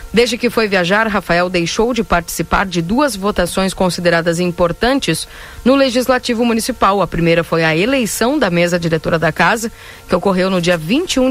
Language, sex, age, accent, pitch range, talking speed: Portuguese, female, 40-59, Brazilian, 170-230 Hz, 165 wpm